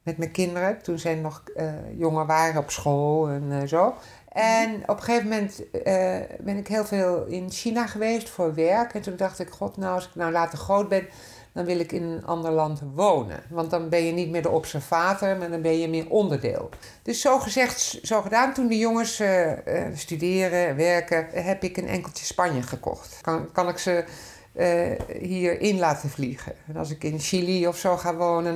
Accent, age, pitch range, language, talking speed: Dutch, 50-69, 160-200 Hz, Dutch, 205 wpm